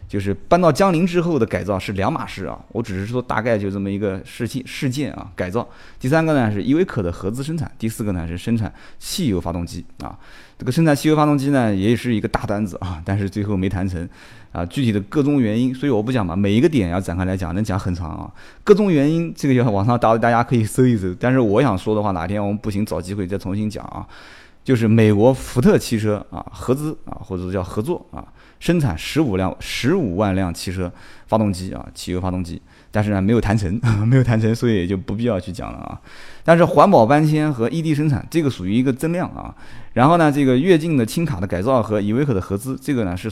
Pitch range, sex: 95-130 Hz, male